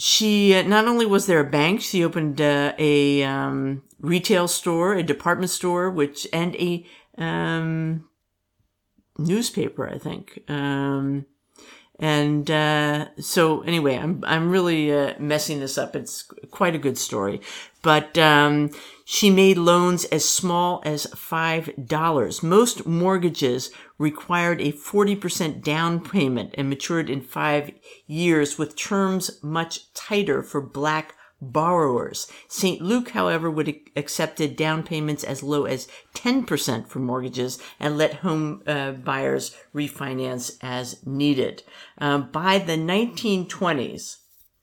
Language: English